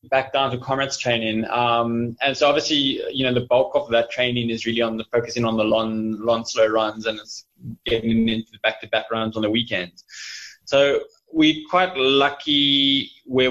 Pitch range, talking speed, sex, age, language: 115-140 Hz, 195 wpm, male, 20-39, English